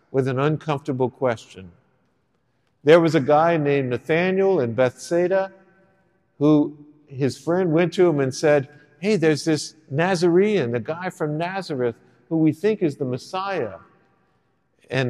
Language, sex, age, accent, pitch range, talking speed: English, male, 50-69, American, 125-170 Hz, 140 wpm